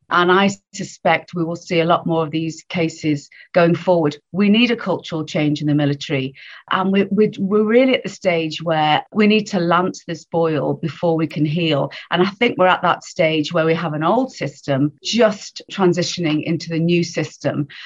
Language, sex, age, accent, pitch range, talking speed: English, female, 40-59, British, 155-185 Hz, 200 wpm